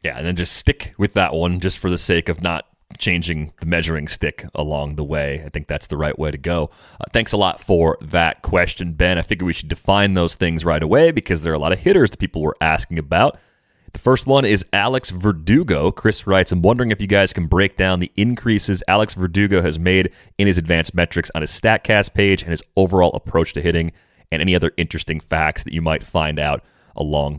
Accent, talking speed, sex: American, 230 wpm, male